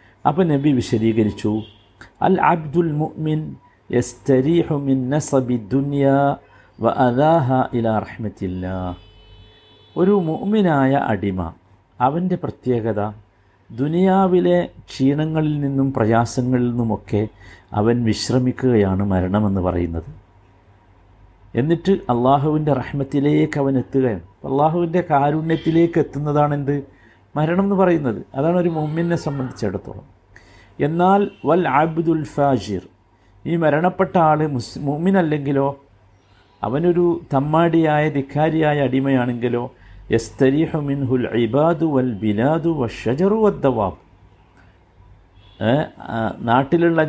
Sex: male